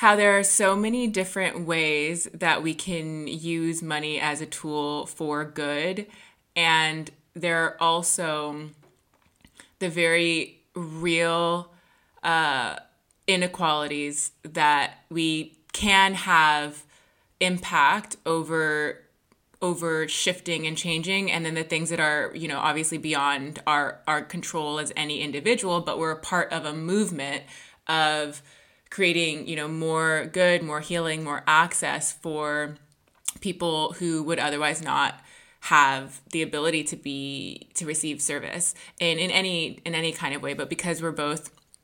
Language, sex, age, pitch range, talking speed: English, female, 20-39, 150-170 Hz, 135 wpm